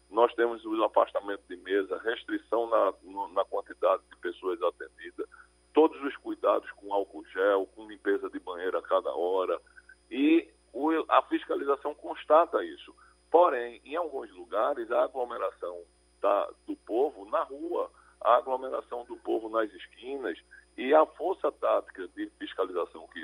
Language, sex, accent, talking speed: Portuguese, male, Brazilian, 145 wpm